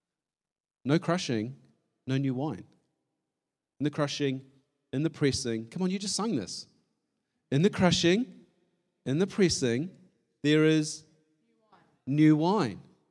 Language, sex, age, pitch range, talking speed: English, male, 40-59, 130-170 Hz, 125 wpm